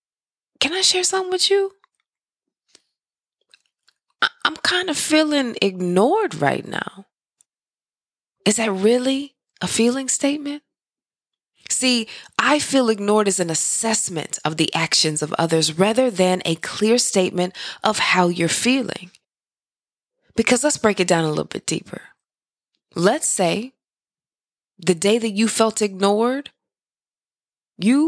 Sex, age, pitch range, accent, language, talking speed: female, 20-39, 185-250 Hz, American, English, 125 wpm